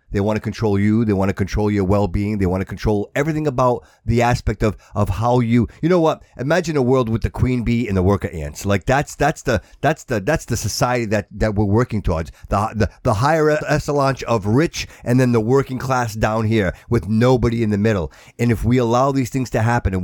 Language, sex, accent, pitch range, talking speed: English, male, American, 105-165 Hz, 235 wpm